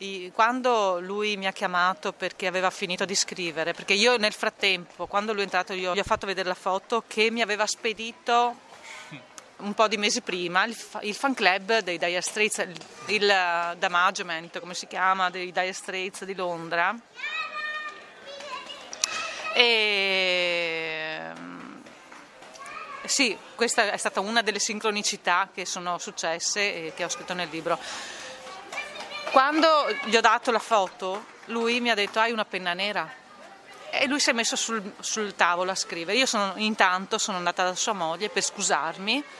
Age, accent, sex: 30-49, native, female